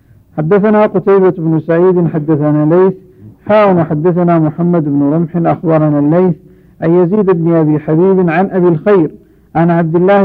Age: 50-69